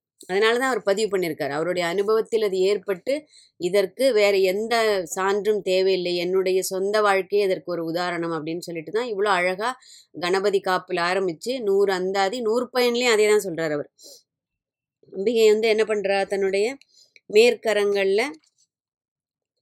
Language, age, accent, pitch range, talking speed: Tamil, 20-39, native, 185-225 Hz, 115 wpm